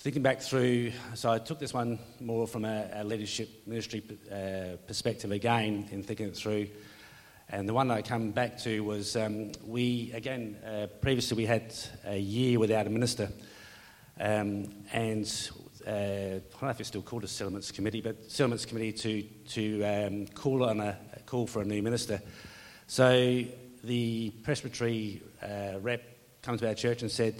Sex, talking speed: male, 175 wpm